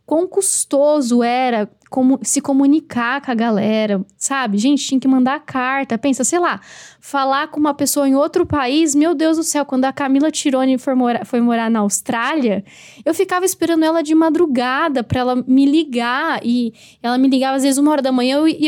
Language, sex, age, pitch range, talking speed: Portuguese, female, 10-29, 240-295 Hz, 195 wpm